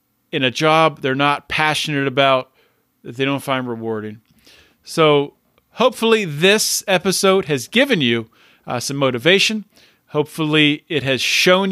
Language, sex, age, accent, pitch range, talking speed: English, male, 40-59, American, 135-185 Hz, 135 wpm